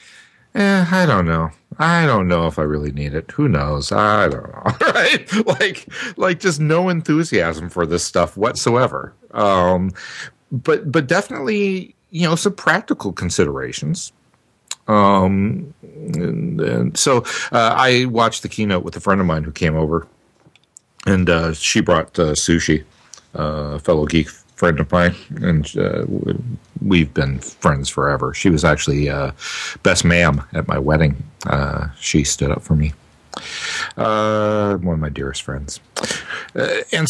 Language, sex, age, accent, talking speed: English, male, 50-69, American, 155 wpm